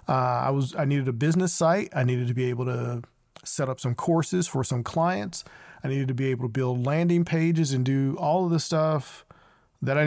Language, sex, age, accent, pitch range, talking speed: English, male, 40-59, American, 125-145 Hz, 225 wpm